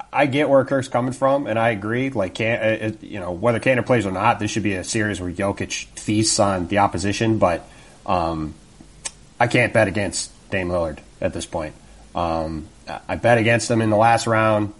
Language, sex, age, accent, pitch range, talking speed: English, male, 30-49, American, 95-115 Hz, 205 wpm